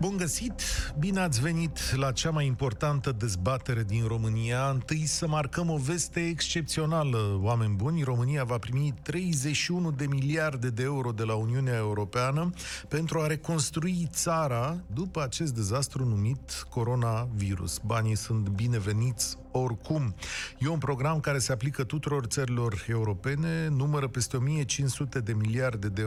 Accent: native